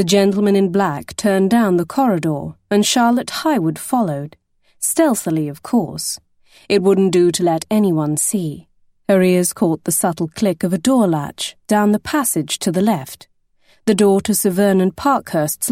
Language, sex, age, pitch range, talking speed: English, female, 30-49, 175-225 Hz, 170 wpm